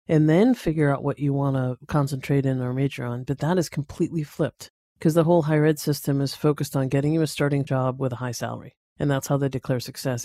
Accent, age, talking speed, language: American, 50-69, 245 wpm, English